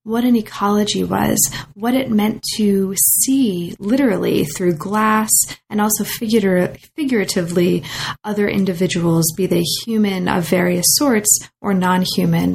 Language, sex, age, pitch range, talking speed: English, female, 20-39, 185-225 Hz, 120 wpm